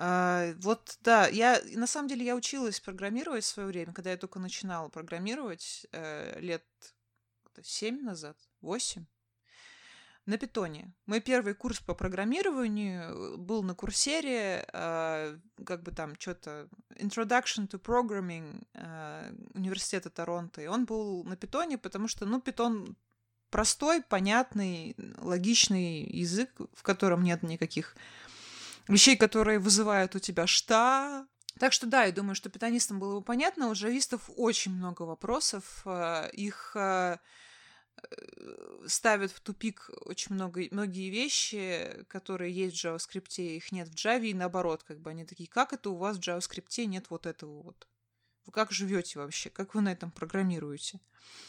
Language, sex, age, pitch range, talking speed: Russian, female, 20-39, 175-230 Hz, 145 wpm